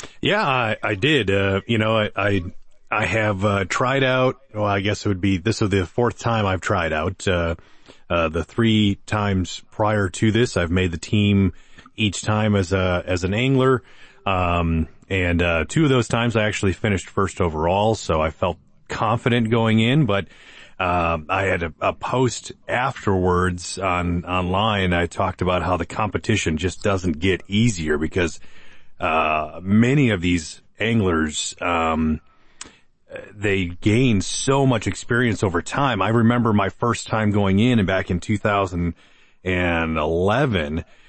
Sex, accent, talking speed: male, American, 160 wpm